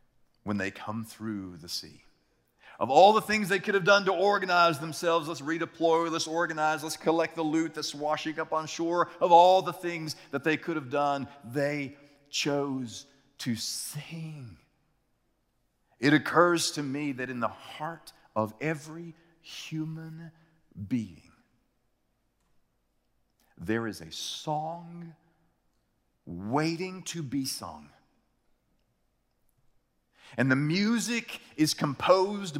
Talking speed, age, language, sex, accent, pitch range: 125 wpm, 40-59, English, male, American, 135-175 Hz